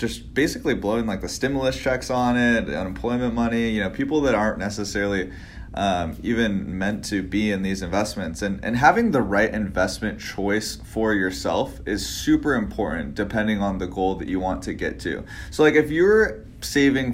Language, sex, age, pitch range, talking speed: English, male, 20-39, 95-120 Hz, 180 wpm